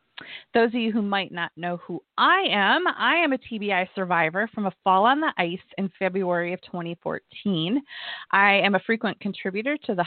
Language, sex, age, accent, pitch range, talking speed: English, female, 30-49, American, 190-255 Hz, 190 wpm